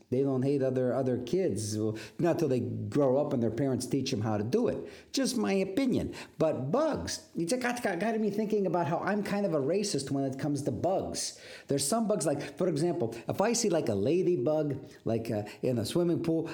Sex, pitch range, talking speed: male, 125-180 Hz, 230 wpm